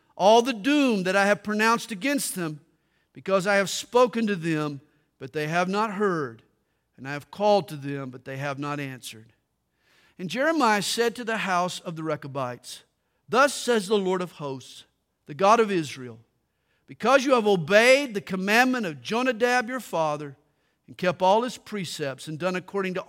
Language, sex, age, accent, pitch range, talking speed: English, male, 50-69, American, 135-210 Hz, 180 wpm